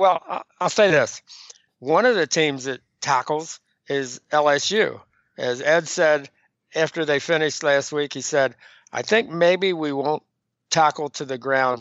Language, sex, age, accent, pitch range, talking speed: English, male, 50-69, American, 135-160 Hz, 160 wpm